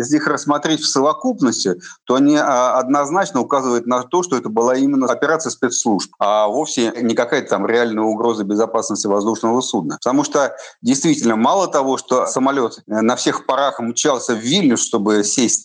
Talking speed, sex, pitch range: 160 wpm, male, 110-135 Hz